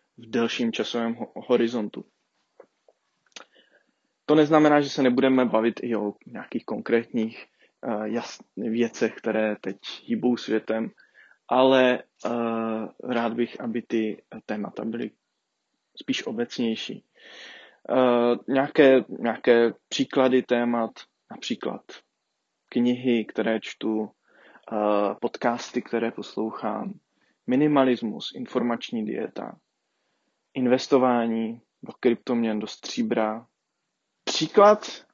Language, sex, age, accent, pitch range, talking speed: Czech, male, 20-39, native, 115-130 Hz, 80 wpm